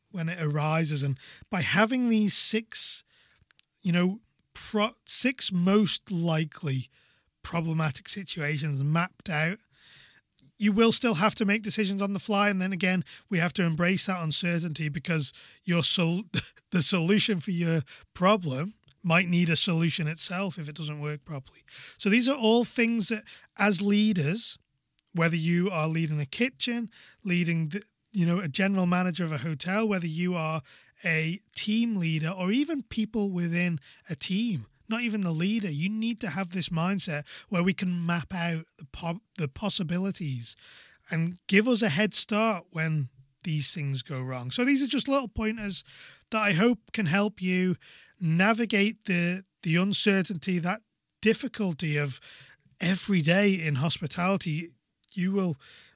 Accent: British